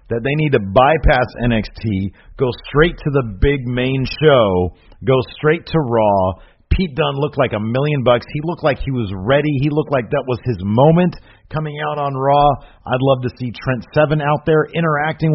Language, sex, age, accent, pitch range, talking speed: English, male, 40-59, American, 120-160 Hz, 195 wpm